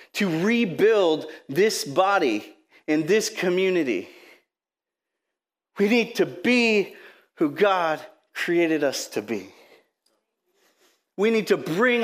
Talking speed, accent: 105 wpm, American